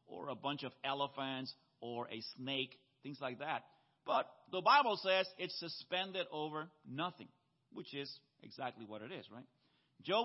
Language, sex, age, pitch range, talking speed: English, male, 40-59, 135-180 Hz, 160 wpm